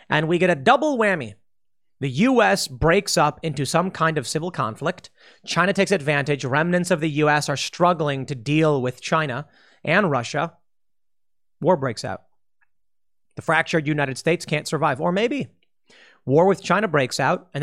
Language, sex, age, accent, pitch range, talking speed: English, male, 30-49, American, 135-180 Hz, 165 wpm